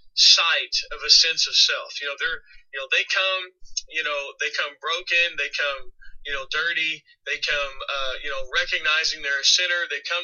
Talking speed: 200 wpm